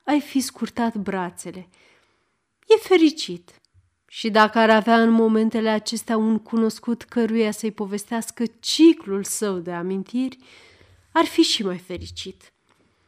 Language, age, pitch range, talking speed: Romanian, 30-49, 200-280 Hz, 125 wpm